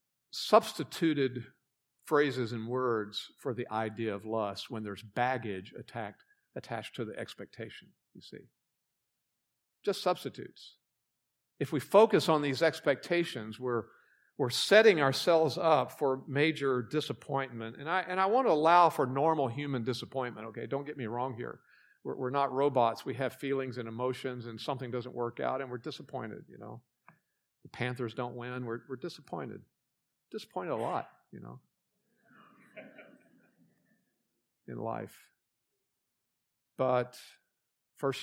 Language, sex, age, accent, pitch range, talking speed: English, male, 50-69, American, 120-145 Hz, 135 wpm